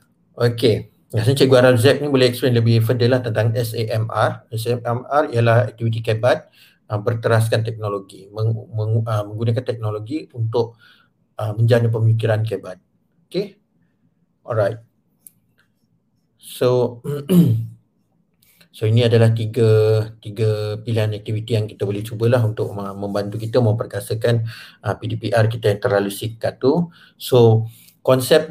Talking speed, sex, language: 120 wpm, male, Malay